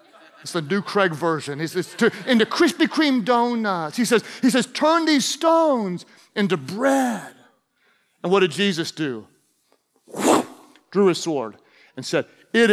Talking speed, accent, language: 155 wpm, American, English